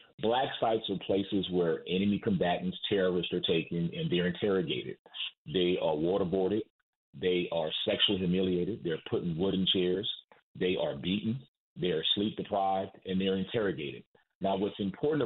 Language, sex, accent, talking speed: English, male, American, 145 wpm